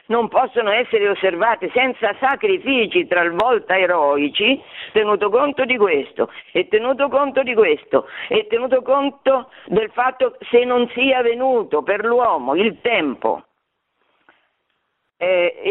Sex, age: female, 50-69